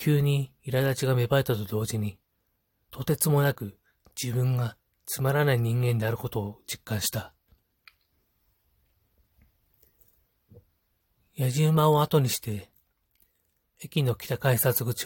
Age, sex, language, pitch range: 40-59, male, Japanese, 95-130 Hz